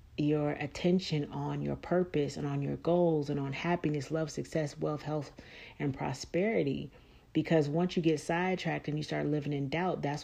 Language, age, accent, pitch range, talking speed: English, 40-59, American, 140-160 Hz, 175 wpm